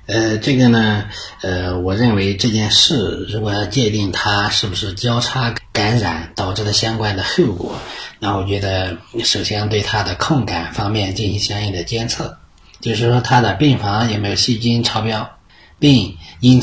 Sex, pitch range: male, 95-120 Hz